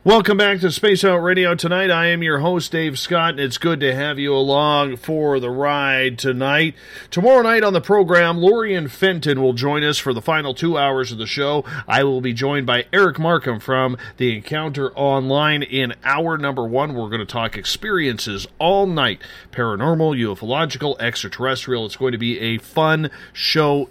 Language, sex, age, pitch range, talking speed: English, male, 40-59, 125-165 Hz, 190 wpm